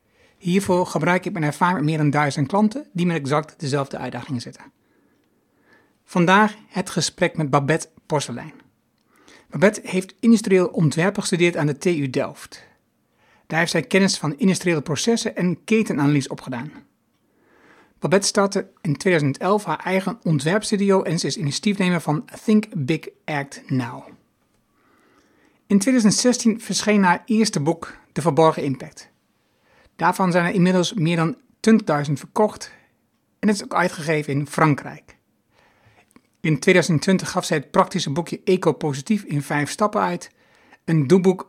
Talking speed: 140 wpm